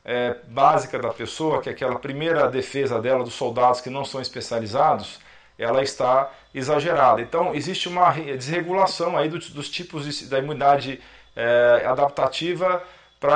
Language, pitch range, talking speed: Portuguese, 135-175 Hz, 130 wpm